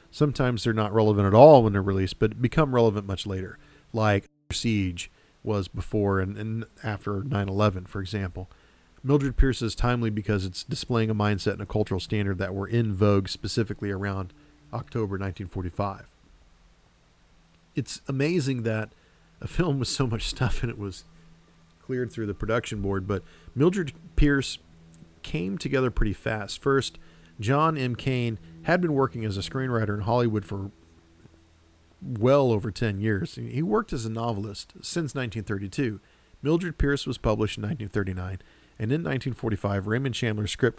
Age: 40-59